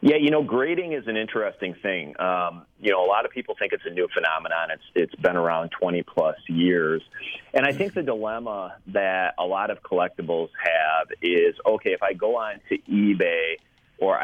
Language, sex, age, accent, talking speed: English, male, 30-49, American, 195 wpm